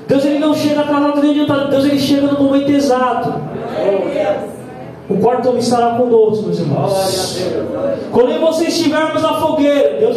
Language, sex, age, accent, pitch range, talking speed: Portuguese, male, 20-39, Brazilian, 240-290 Hz, 155 wpm